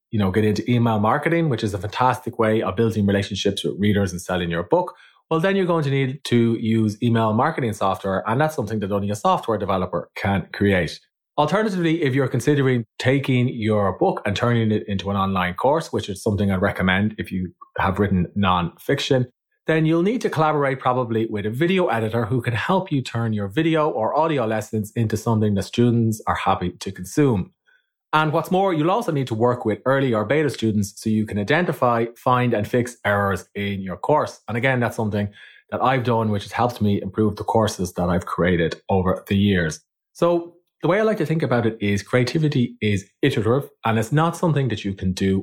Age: 30-49